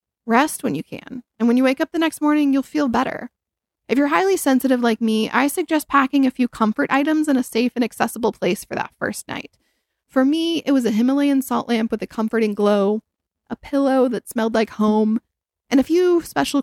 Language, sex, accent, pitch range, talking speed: English, female, American, 220-280 Hz, 215 wpm